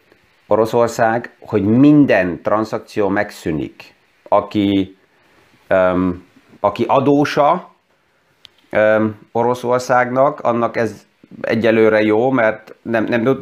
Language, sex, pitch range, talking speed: Hungarian, male, 100-120 Hz, 85 wpm